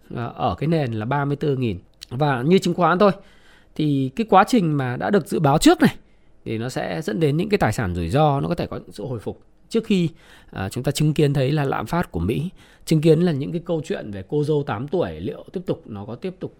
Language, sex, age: Vietnamese, male, 20-39